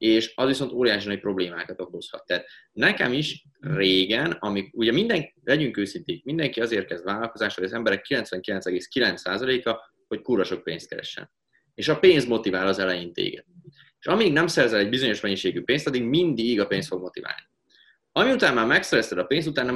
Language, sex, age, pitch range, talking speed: Hungarian, male, 20-39, 95-145 Hz, 165 wpm